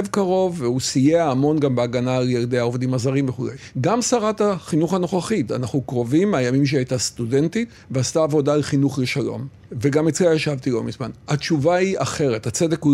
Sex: male